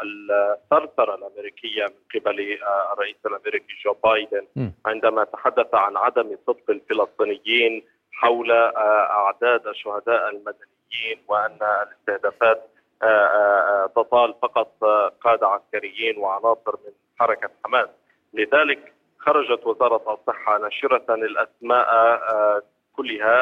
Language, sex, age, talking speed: Arabic, male, 30-49, 90 wpm